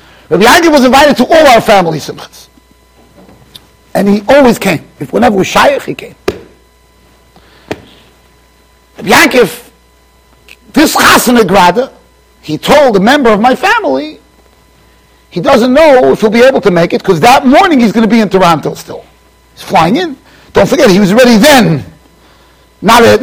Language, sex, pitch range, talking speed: English, male, 175-265 Hz, 150 wpm